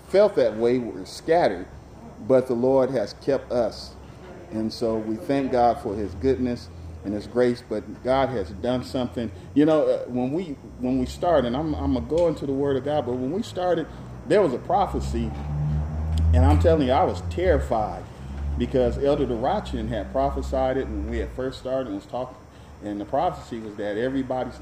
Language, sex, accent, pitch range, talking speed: English, male, American, 100-125 Hz, 195 wpm